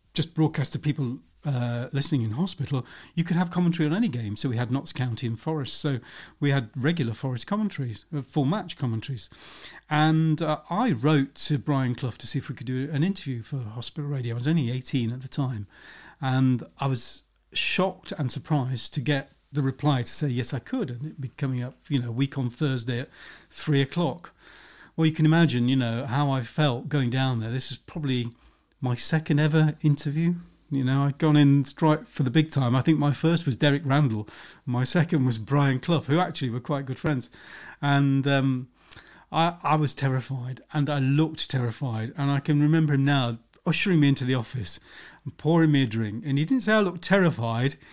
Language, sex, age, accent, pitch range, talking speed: English, male, 40-59, British, 125-155 Hz, 205 wpm